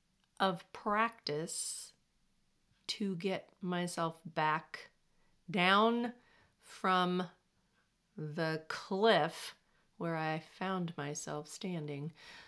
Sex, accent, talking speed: female, American, 70 wpm